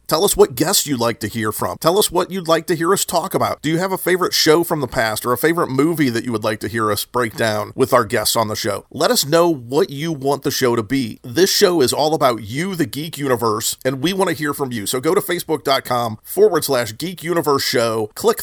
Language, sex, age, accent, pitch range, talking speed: English, male, 40-59, American, 125-170 Hz, 270 wpm